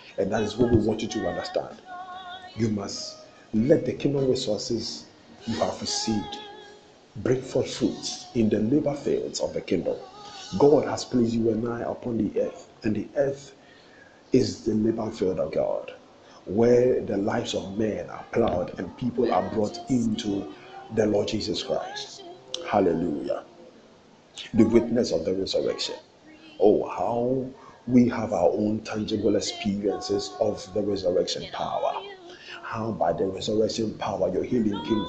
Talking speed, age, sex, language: 150 wpm, 50-69, male, English